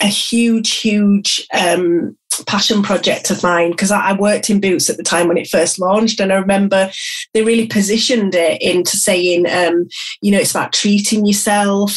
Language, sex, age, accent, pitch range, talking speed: English, female, 30-49, British, 180-215 Hz, 180 wpm